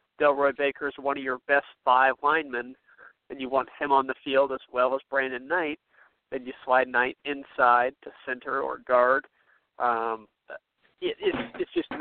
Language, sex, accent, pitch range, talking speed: English, male, American, 125-145 Hz, 175 wpm